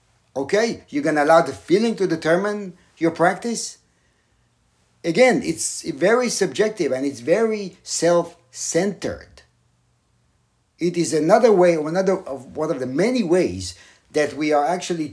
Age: 60-79